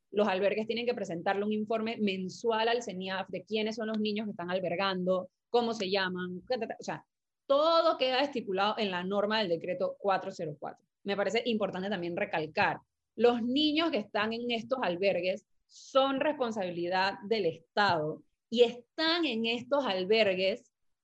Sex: female